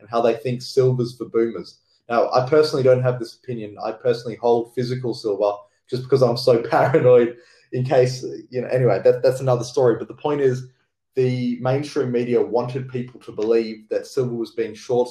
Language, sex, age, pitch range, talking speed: English, male, 20-39, 110-130 Hz, 190 wpm